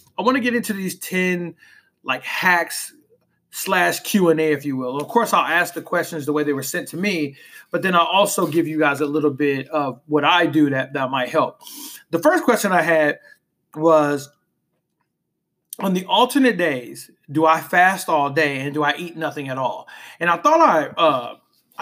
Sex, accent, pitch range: male, American, 150-190 Hz